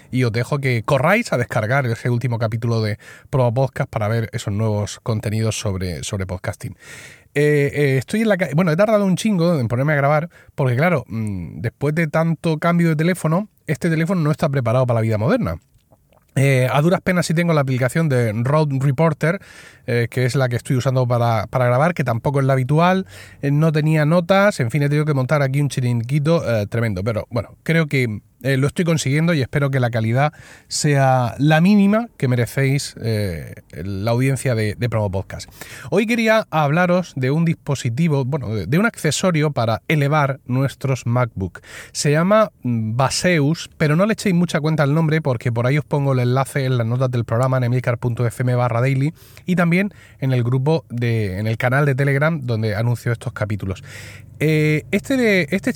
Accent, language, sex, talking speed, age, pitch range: Spanish, Spanish, male, 190 wpm, 30-49, 120-155 Hz